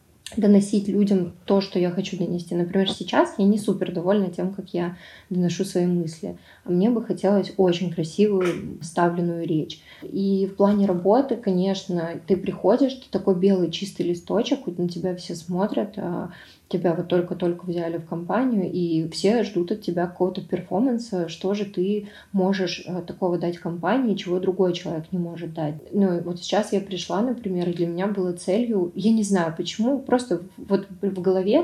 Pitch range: 175-205 Hz